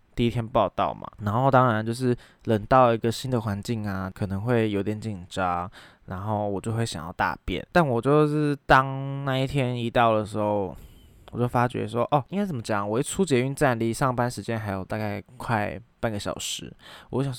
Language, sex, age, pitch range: Chinese, male, 20-39, 110-135 Hz